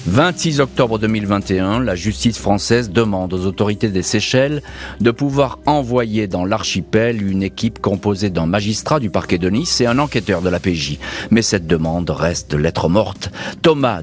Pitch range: 95-120 Hz